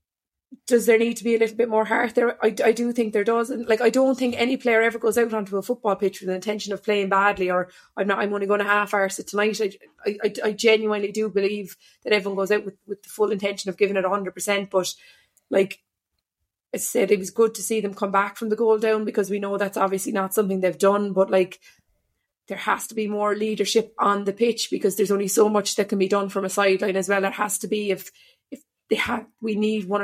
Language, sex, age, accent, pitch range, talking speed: English, female, 20-39, Irish, 190-220 Hz, 255 wpm